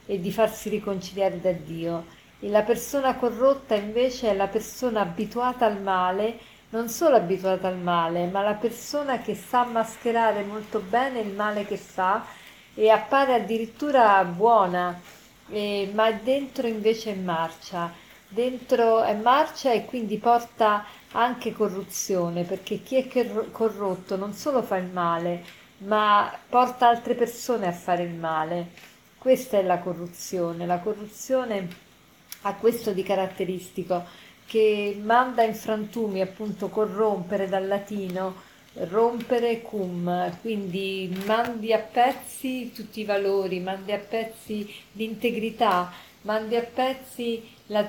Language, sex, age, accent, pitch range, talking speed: Italian, female, 40-59, native, 195-235 Hz, 130 wpm